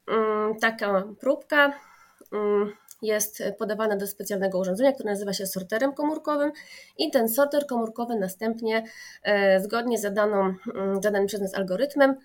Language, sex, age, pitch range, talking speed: Polish, female, 30-49, 205-270 Hz, 115 wpm